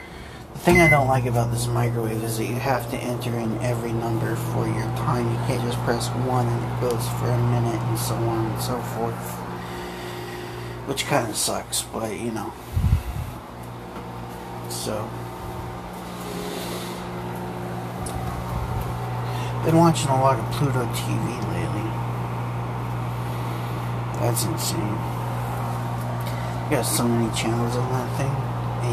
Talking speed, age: 130 wpm, 60-79